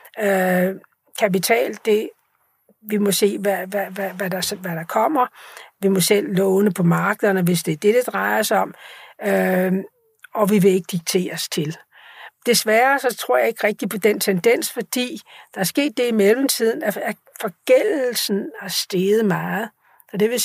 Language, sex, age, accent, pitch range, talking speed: Danish, female, 60-79, native, 190-225 Hz, 175 wpm